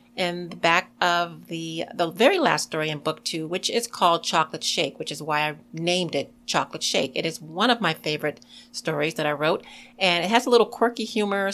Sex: female